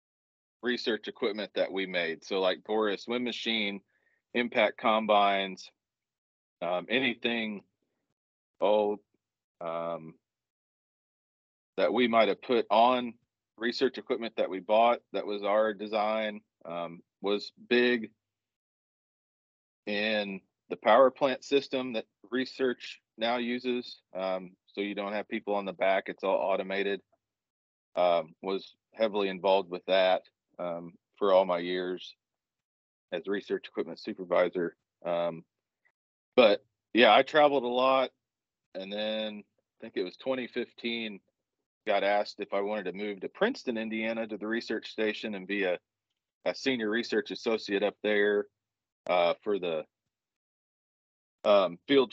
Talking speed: 130 wpm